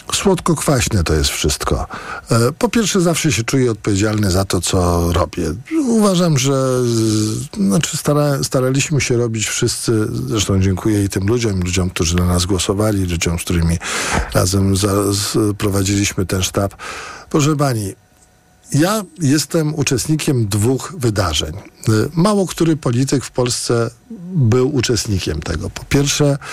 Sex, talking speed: male, 120 wpm